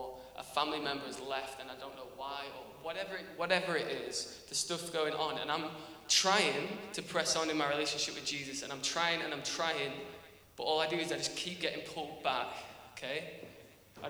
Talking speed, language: 210 wpm, English